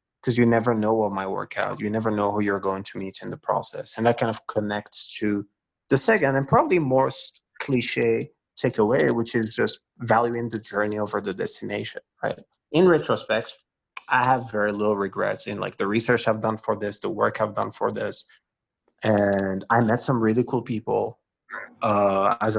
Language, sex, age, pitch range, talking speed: English, male, 20-39, 105-125 Hz, 190 wpm